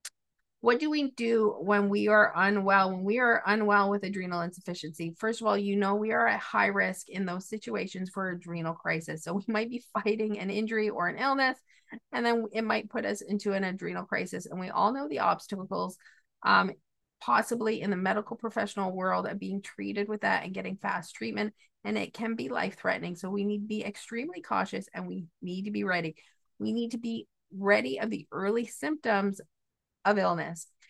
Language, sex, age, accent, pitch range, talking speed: English, female, 30-49, American, 195-225 Hz, 200 wpm